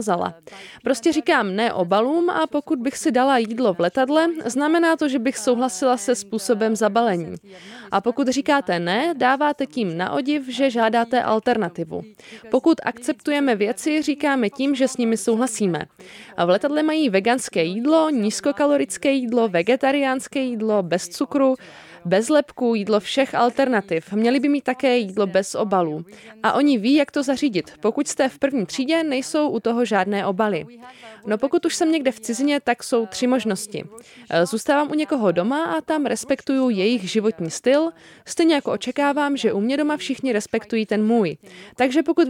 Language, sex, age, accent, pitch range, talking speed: Czech, female, 20-39, native, 220-290 Hz, 165 wpm